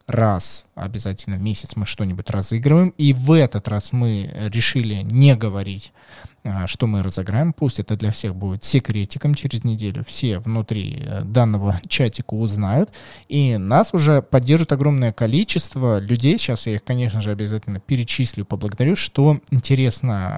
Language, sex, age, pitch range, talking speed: Russian, male, 20-39, 105-130 Hz, 140 wpm